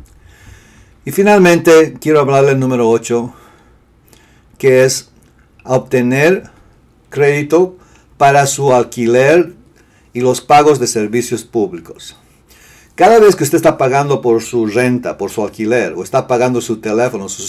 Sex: male